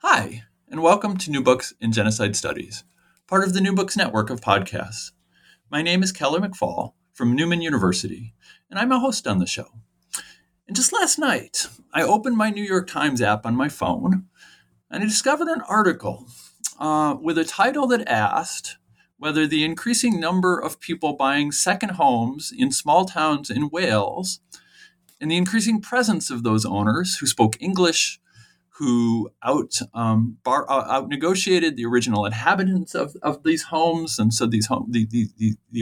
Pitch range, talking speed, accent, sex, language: 120-195 Hz, 165 wpm, American, male, English